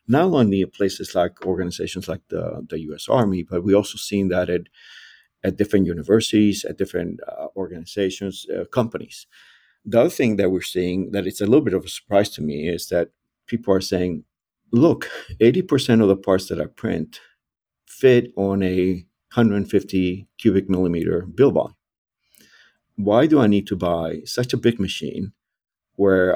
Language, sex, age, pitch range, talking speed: English, male, 50-69, 95-115 Hz, 165 wpm